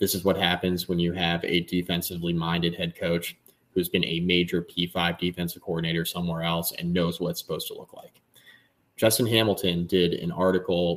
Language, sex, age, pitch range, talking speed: English, male, 20-39, 85-95 Hz, 180 wpm